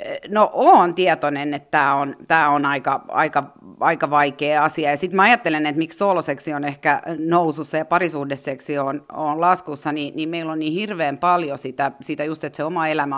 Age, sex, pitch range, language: 30-49, female, 145-175 Hz, Finnish